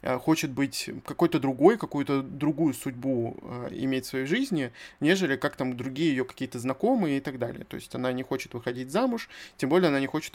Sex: male